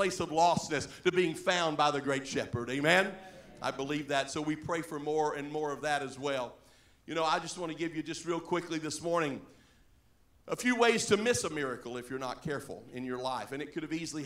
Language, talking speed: English, 240 wpm